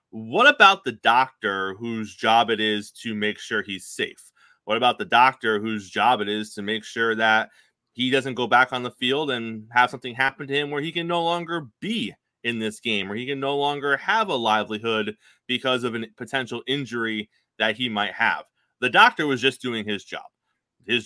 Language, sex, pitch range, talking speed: English, male, 110-130 Hz, 205 wpm